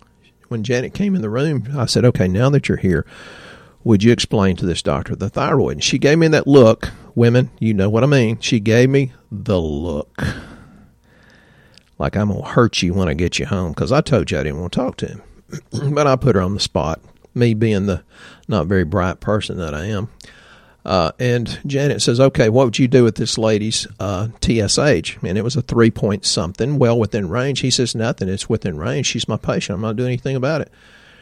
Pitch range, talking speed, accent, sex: 105-130 Hz, 220 wpm, American, male